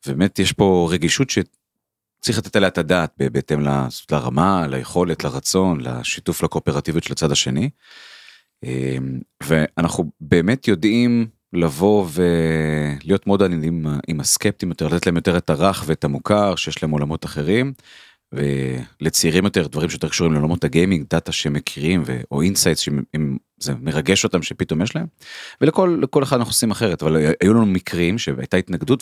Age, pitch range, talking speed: 30-49, 70-95 Hz, 145 wpm